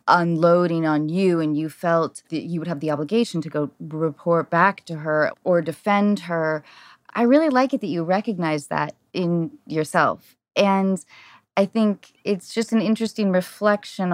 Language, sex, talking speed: English, female, 165 wpm